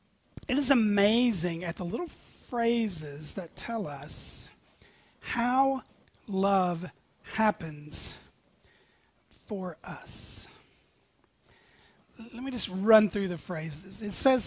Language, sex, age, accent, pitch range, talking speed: English, male, 40-59, American, 195-245 Hz, 100 wpm